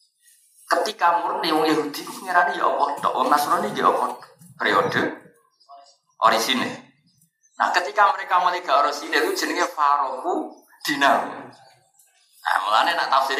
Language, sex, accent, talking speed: Indonesian, male, native, 85 wpm